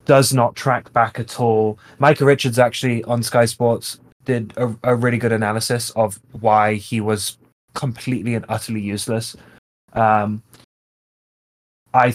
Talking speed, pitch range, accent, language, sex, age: 140 wpm, 110-125 Hz, British, English, male, 20-39